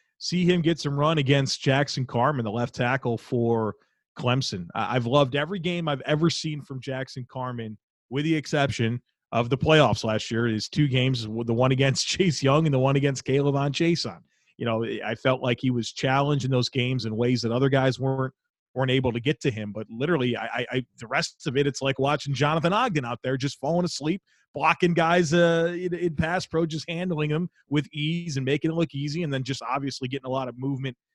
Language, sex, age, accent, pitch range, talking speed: English, male, 30-49, American, 125-150 Hz, 220 wpm